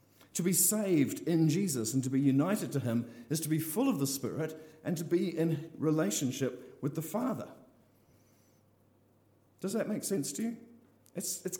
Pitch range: 110-155 Hz